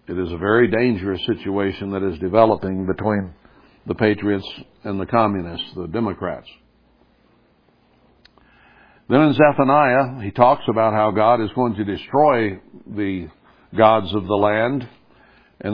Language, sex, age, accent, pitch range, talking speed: English, male, 60-79, American, 100-125 Hz, 135 wpm